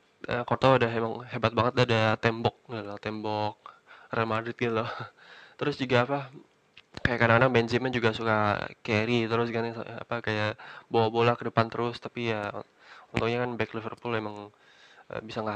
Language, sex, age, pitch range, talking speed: Indonesian, male, 20-39, 110-120 Hz, 155 wpm